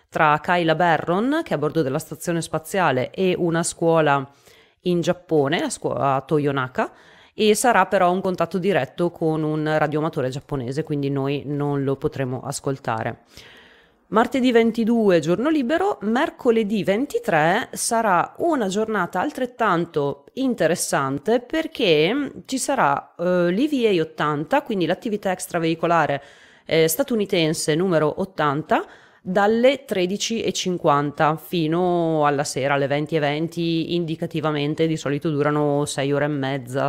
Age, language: 30-49, Italian